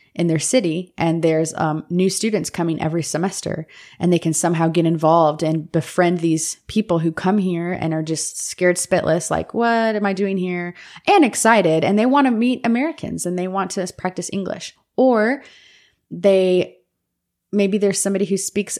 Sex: female